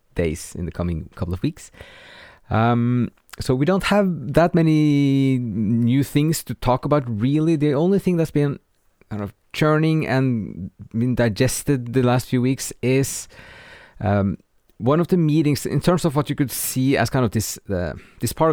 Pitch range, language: 100-135 Hz, English